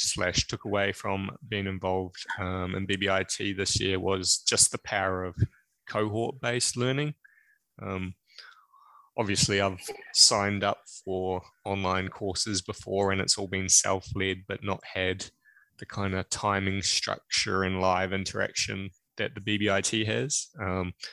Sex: male